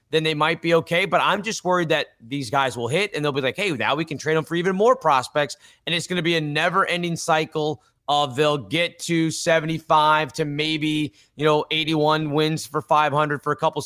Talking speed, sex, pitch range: 225 wpm, male, 140-165 Hz